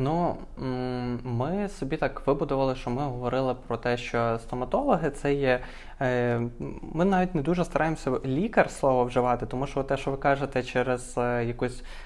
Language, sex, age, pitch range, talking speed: Ukrainian, male, 20-39, 125-160 Hz, 150 wpm